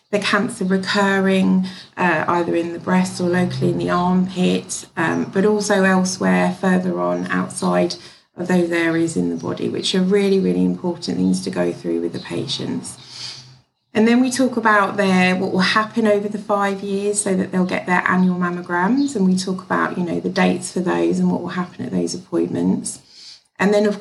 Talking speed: 195 wpm